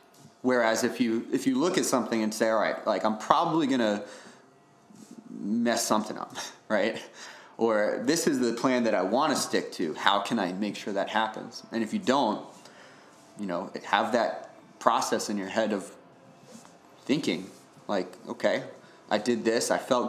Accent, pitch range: American, 110-130 Hz